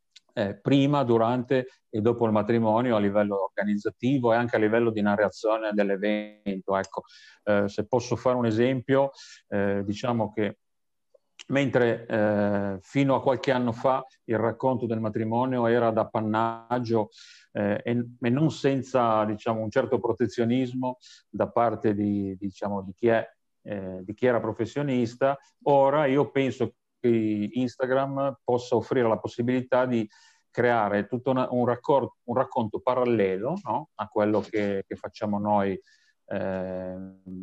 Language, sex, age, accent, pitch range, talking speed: Italian, male, 40-59, native, 105-130 Hz, 130 wpm